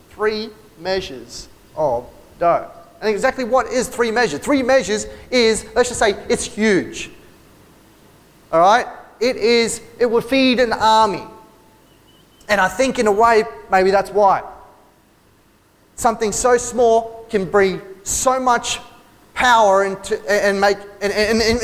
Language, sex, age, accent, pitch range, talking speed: English, male, 30-49, Australian, 185-235 Hz, 140 wpm